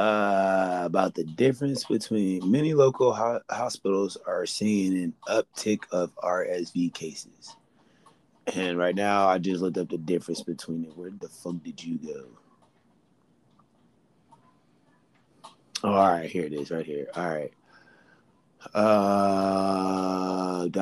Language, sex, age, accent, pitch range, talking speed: English, male, 20-39, American, 90-100 Hz, 120 wpm